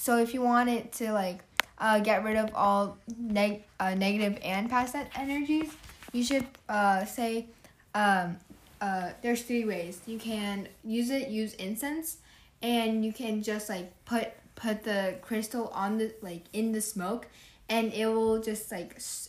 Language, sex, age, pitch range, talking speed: English, female, 10-29, 195-235 Hz, 165 wpm